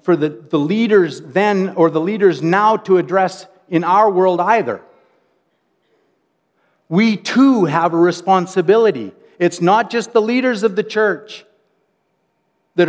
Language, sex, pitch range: English, male, 165-215 Hz